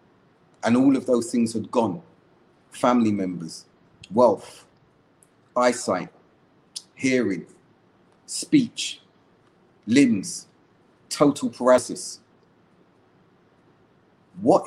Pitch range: 95-130 Hz